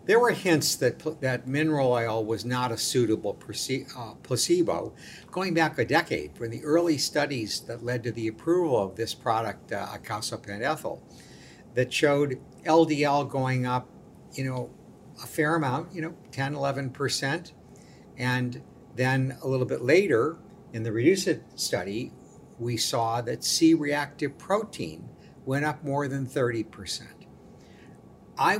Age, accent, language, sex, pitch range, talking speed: 60-79, American, English, male, 120-155 Hz, 145 wpm